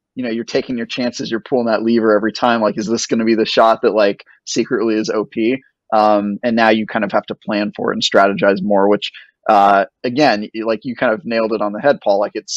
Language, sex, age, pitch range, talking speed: English, male, 20-39, 105-120 Hz, 260 wpm